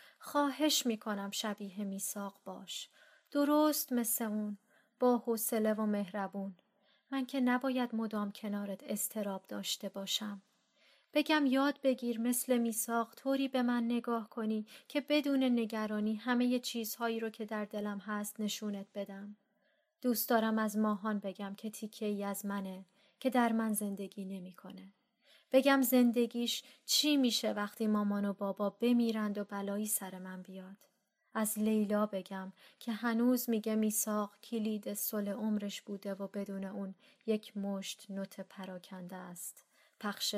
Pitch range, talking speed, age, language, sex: 200-240 Hz, 135 wpm, 30-49, Persian, female